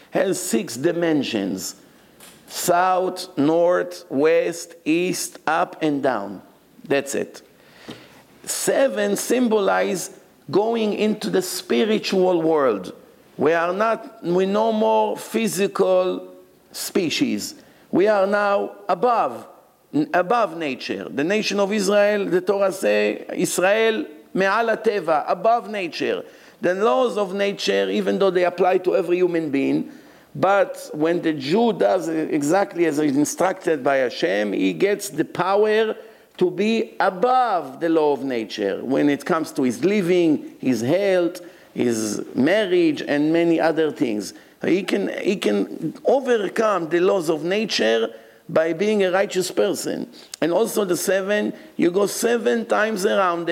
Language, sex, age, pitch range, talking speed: English, male, 50-69, 165-215 Hz, 130 wpm